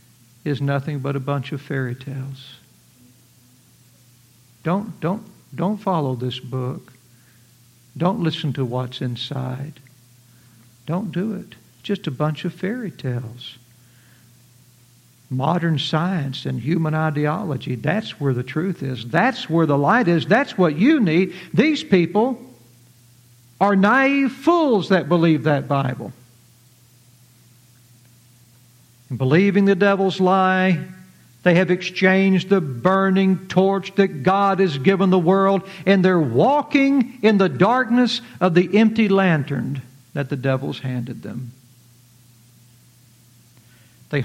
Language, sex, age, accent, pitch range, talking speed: English, male, 60-79, American, 125-185 Hz, 120 wpm